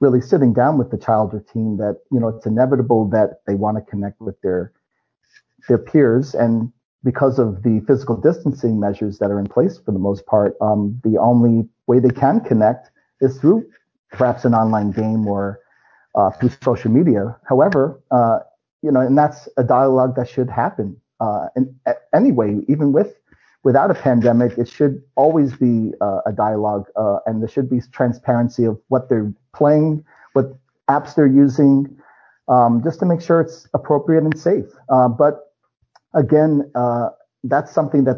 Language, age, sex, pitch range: English, 40-59, male, 110-135 Hz